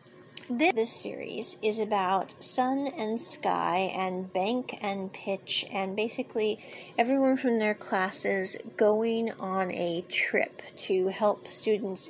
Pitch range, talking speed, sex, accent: 195-250 Hz, 120 wpm, female, American